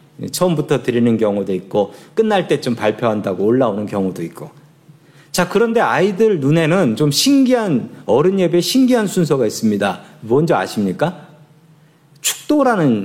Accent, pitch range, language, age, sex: native, 135-185 Hz, Korean, 40-59, male